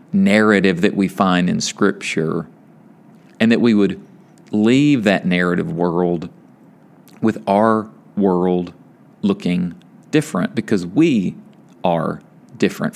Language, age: English, 40-59